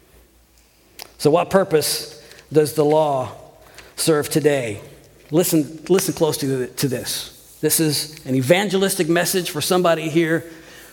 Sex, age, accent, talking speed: male, 50-69, American, 115 wpm